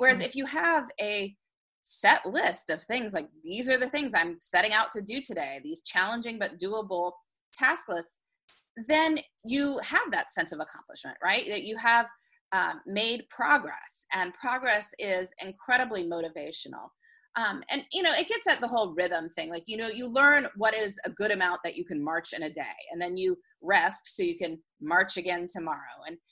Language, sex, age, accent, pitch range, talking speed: English, female, 30-49, American, 175-280 Hz, 190 wpm